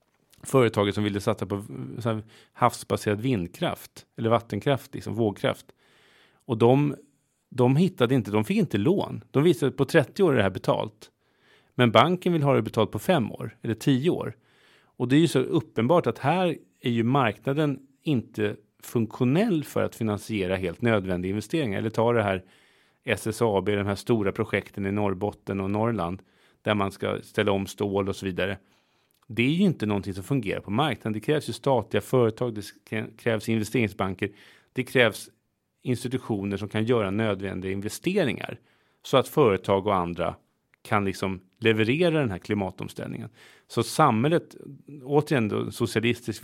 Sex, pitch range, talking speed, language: male, 100-130 Hz, 160 wpm, Swedish